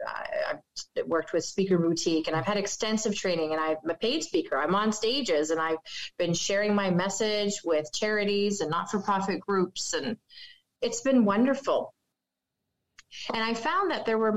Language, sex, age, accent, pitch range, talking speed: English, female, 30-49, American, 185-250 Hz, 165 wpm